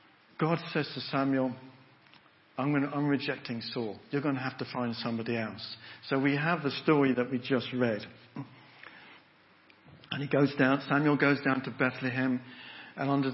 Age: 50-69